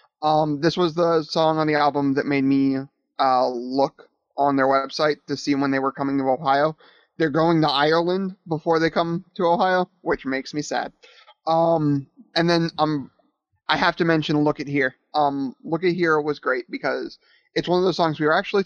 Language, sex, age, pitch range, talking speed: English, male, 30-49, 140-170 Hz, 205 wpm